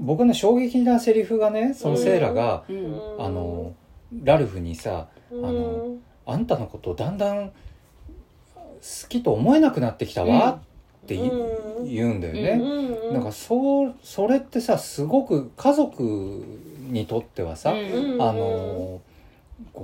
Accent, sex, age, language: native, male, 40-59, Japanese